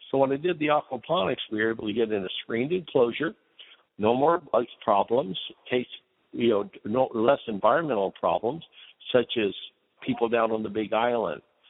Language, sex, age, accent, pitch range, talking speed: English, male, 60-79, American, 110-150 Hz, 155 wpm